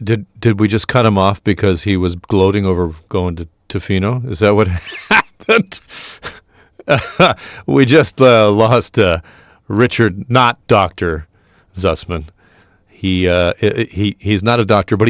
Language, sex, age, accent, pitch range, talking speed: English, male, 40-59, American, 90-115 Hz, 145 wpm